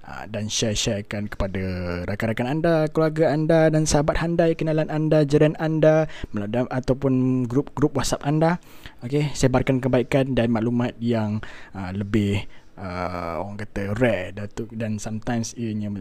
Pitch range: 105-145 Hz